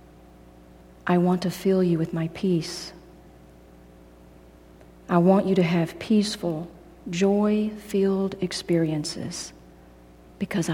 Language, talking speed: English, 95 wpm